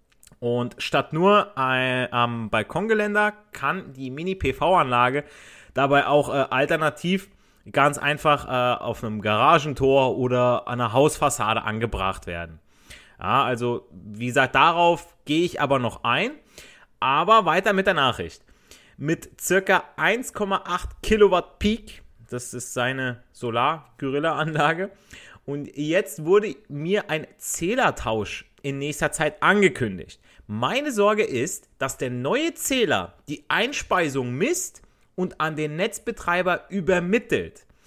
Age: 30-49